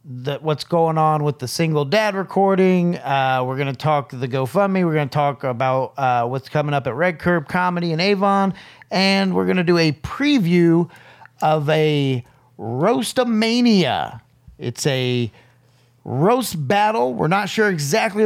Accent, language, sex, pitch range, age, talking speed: American, English, male, 130-180 Hz, 40-59, 165 wpm